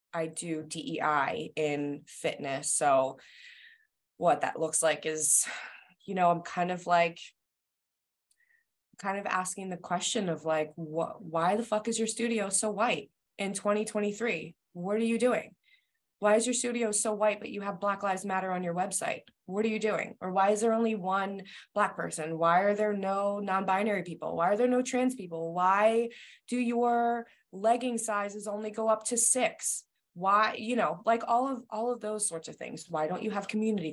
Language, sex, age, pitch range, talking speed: English, female, 20-39, 160-215 Hz, 185 wpm